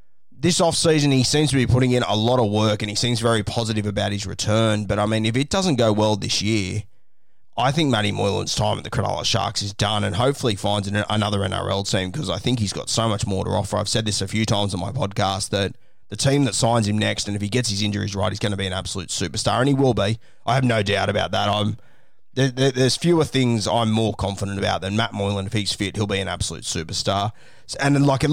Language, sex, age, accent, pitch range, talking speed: English, male, 20-39, Australian, 100-125 Hz, 250 wpm